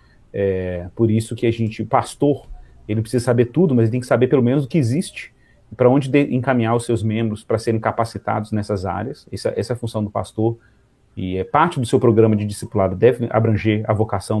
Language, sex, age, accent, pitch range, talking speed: Portuguese, male, 40-59, Brazilian, 110-135 Hz, 215 wpm